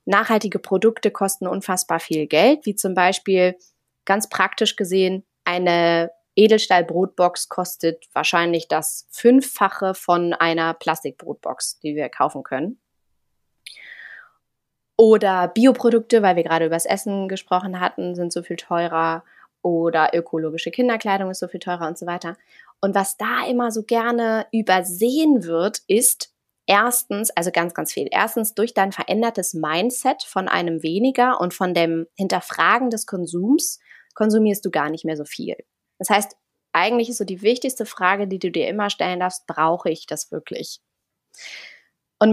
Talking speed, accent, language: 145 wpm, German, German